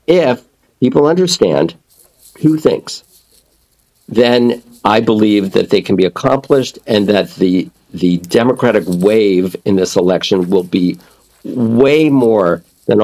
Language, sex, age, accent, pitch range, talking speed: English, male, 50-69, American, 100-135 Hz, 125 wpm